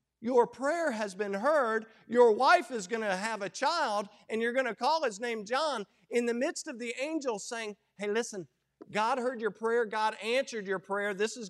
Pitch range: 170-235 Hz